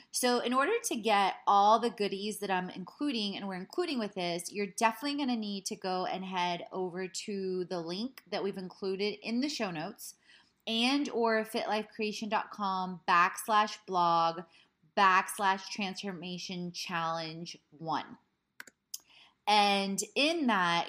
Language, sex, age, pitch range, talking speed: English, female, 20-39, 185-230 Hz, 140 wpm